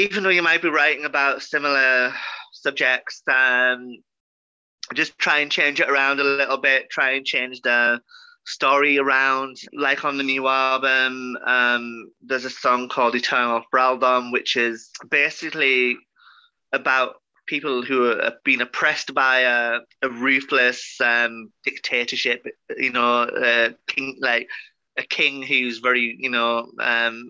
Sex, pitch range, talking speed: male, 120-135 Hz, 135 wpm